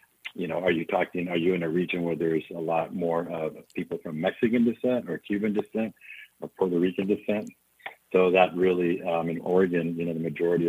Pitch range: 85-95 Hz